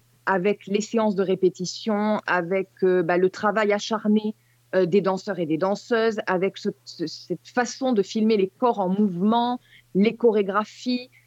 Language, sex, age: French, female, 20-39